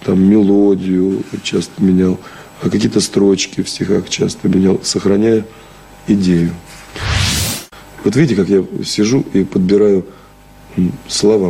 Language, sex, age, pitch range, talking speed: Russian, male, 40-59, 95-110 Hz, 110 wpm